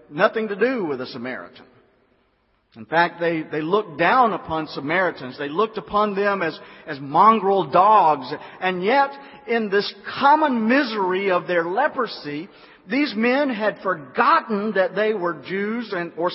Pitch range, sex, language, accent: 170-255 Hz, male, English, American